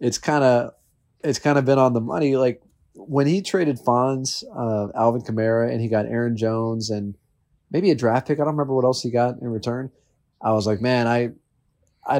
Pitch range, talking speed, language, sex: 110-135 Hz, 205 wpm, English, male